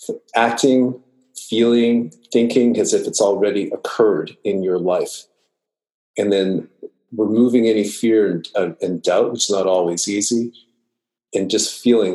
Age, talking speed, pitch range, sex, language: 40-59, 135 wpm, 100-155 Hz, male, English